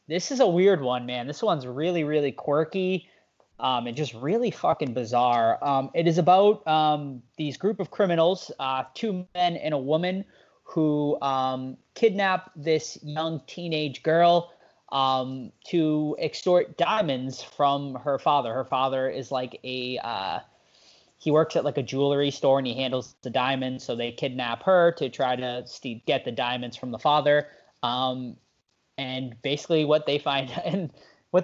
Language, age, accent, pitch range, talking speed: English, 20-39, American, 130-165 Hz, 160 wpm